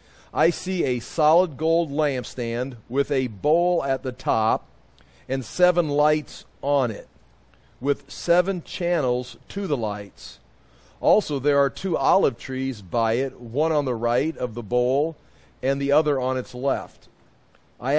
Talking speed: 150 wpm